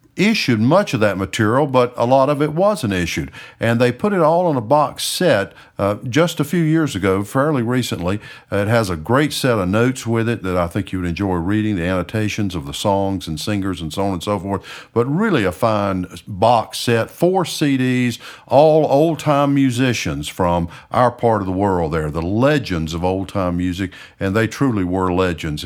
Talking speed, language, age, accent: 200 wpm, English, 50-69, American